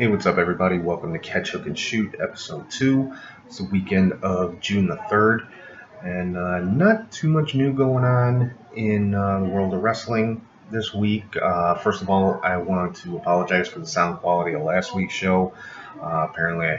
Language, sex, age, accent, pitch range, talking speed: English, male, 30-49, American, 90-105 Hz, 195 wpm